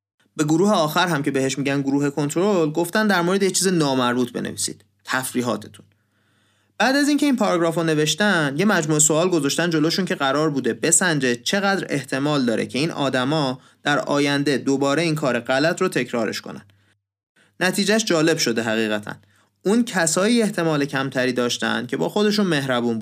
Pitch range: 120-175 Hz